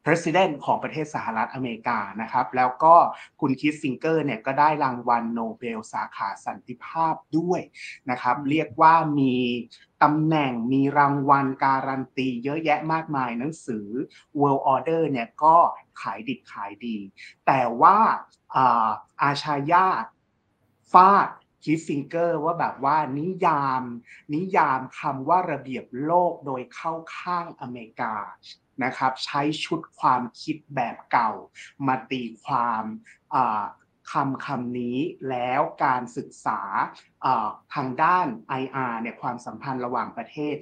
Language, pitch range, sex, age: Thai, 125-155 Hz, male, 30-49